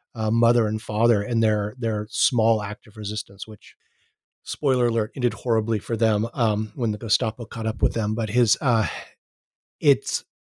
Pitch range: 105-130 Hz